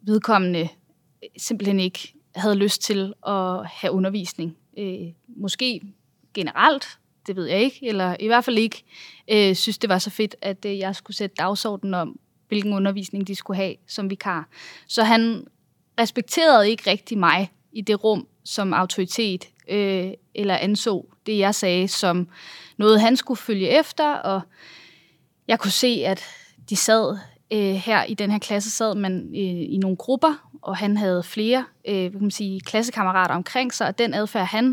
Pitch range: 185-220 Hz